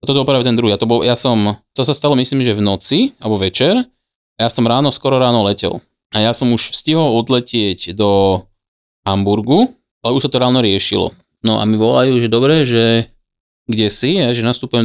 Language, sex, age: Slovak, male, 20-39